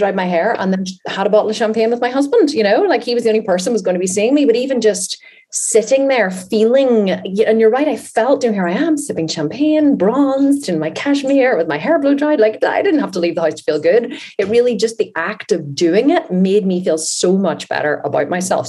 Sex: female